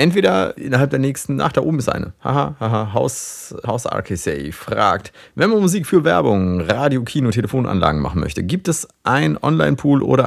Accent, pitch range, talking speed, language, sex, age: German, 100-135 Hz, 175 wpm, German, male, 30-49